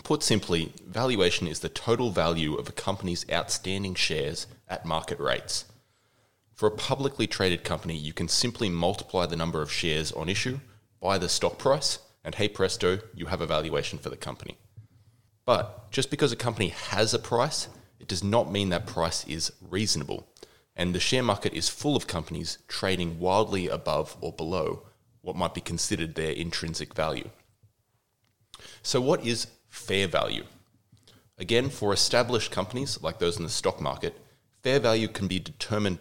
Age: 20-39